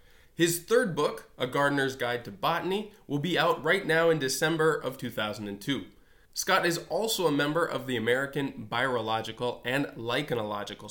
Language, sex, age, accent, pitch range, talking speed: English, male, 20-39, American, 120-160 Hz, 155 wpm